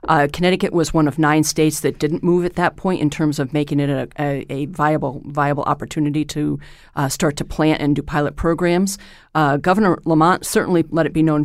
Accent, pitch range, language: American, 150-170 Hz, English